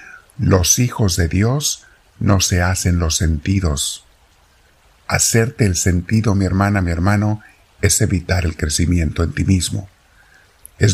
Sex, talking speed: male, 130 wpm